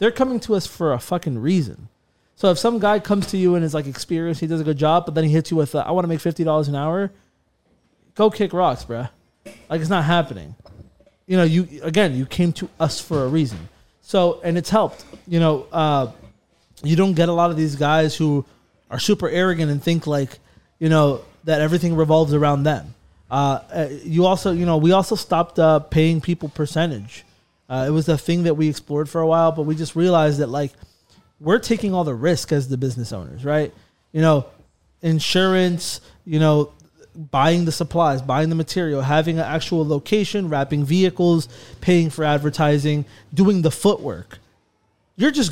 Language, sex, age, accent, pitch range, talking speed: English, male, 20-39, American, 150-180 Hz, 200 wpm